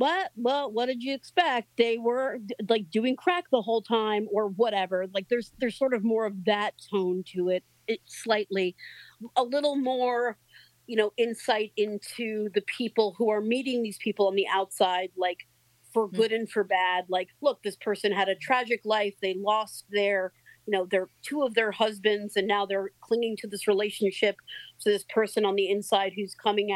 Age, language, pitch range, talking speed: 40-59, English, 195-240 Hz, 195 wpm